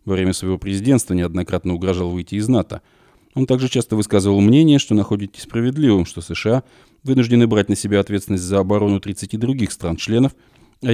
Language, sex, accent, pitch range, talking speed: Russian, male, native, 90-110 Hz, 165 wpm